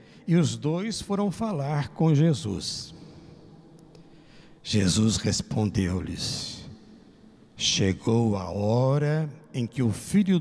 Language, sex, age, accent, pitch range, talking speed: Portuguese, male, 60-79, Brazilian, 110-180 Hz, 90 wpm